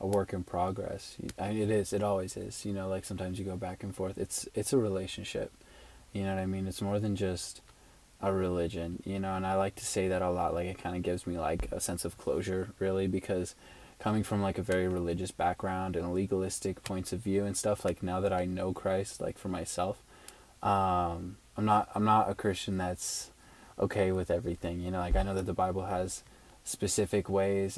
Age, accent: 20-39, American